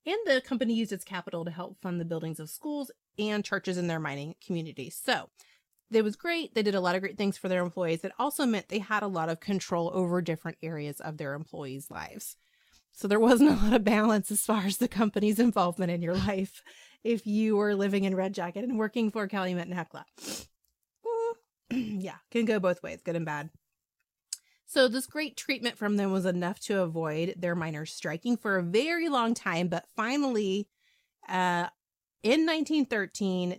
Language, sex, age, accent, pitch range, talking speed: English, female, 30-49, American, 170-225 Hz, 195 wpm